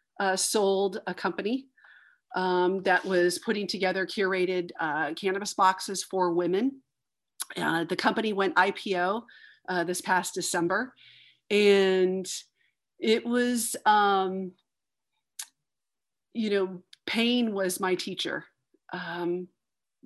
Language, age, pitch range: English, 40-59, 180-205 Hz